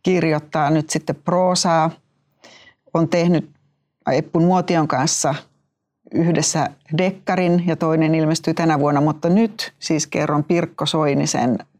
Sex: female